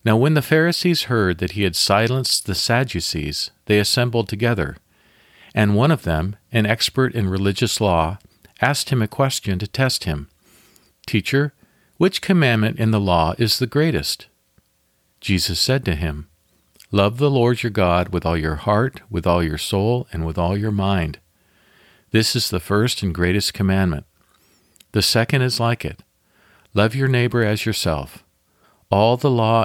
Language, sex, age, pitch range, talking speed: English, male, 50-69, 90-120 Hz, 165 wpm